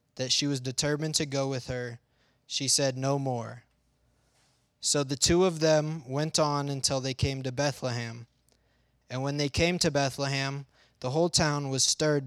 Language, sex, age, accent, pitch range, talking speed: English, male, 20-39, American, 125-150 Hz, 170 wpm